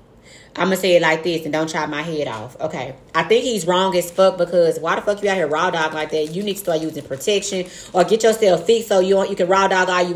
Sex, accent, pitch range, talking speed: female, American, 180-220 Hz, 295 wpm